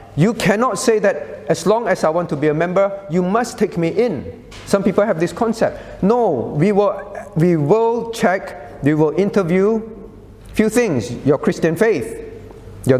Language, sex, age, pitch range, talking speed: English, male, 50-69, 150-205 Hz, 180 wpm